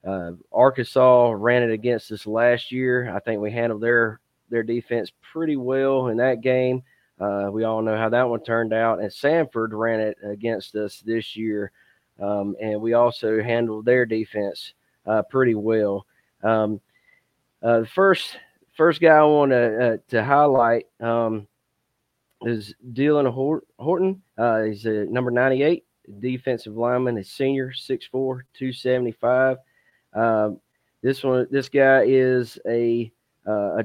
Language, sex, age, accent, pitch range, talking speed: English, male, 30-49, American, 110-130 Hz, 145 wpm